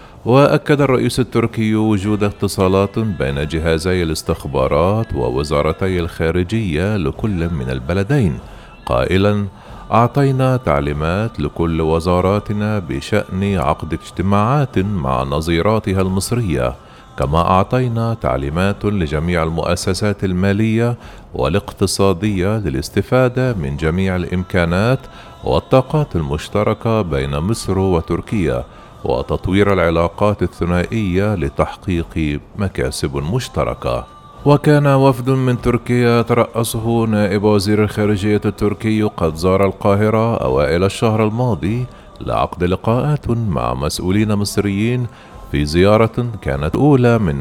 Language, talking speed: Arabic, 90 wpm